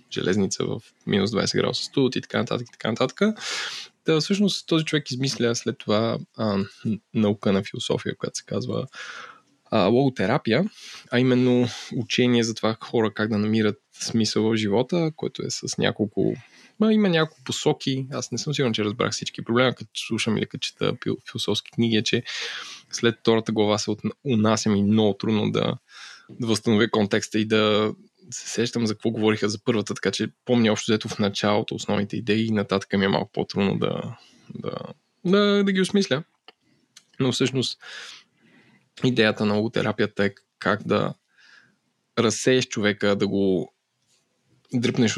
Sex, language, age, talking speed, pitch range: male, Bulgarian, 20-39, 160 wpm, 105-125 Hz